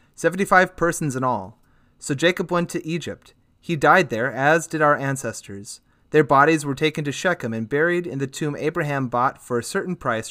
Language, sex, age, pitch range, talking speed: English, male, 30-49, 125-165 Hz, 190 wpm